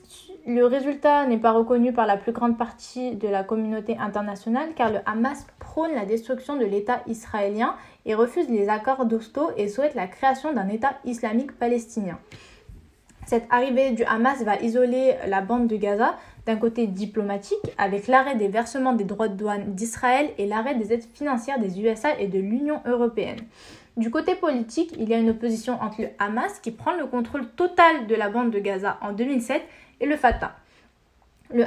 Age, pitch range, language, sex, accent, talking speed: 10-29, 225-265 Hz, French, female, French, 180 wpm